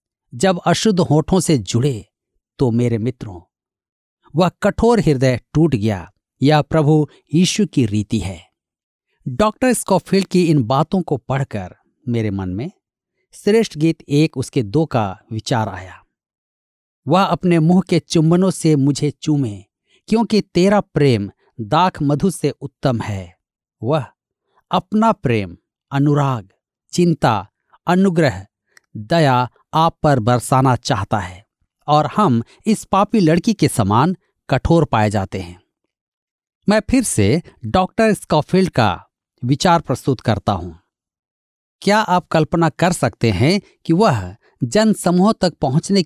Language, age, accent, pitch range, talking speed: Hindi, 50-69, native, 115-175 Hz, 120 wpm